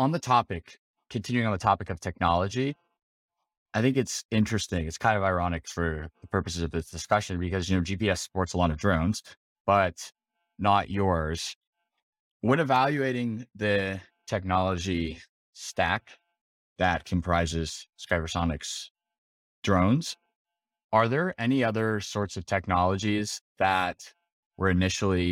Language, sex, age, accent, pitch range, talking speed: English, male, 20-39, American, 90-105 Hz, 130 wpm